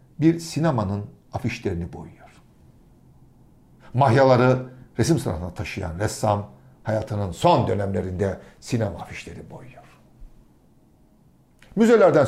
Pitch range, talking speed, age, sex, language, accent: 105-155 Hz, 80 wpm, 60-79, male, Turkish, native